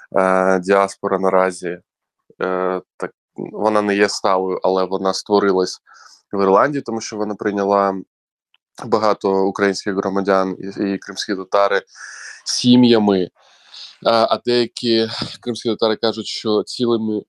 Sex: male